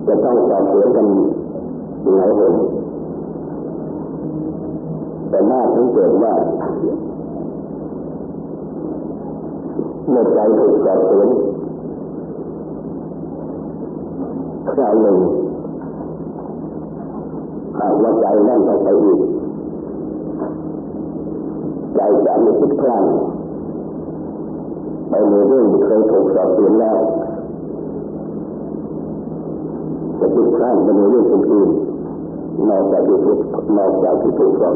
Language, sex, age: Thai, male, 50-69